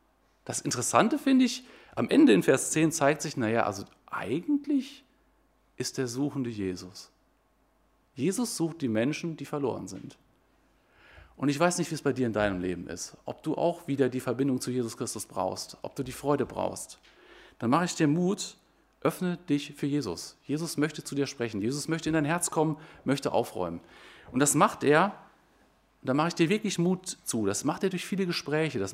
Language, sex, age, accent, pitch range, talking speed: German, male, 40-59, German, 135-170 Hz, 190 wpm